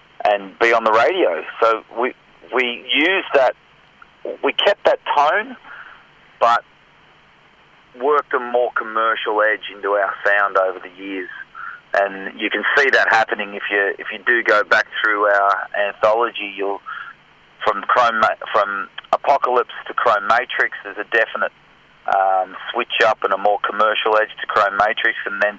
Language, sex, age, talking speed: English, male, 40-59, 155 wpm